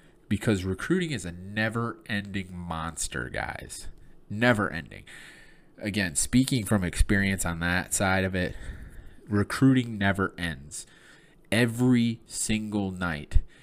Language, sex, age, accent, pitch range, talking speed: English, male, 20-39, American, 85-110 Hz, 100 wpm